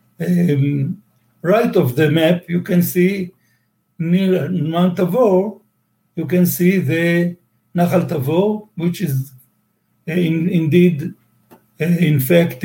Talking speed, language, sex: 120 wpm, English, male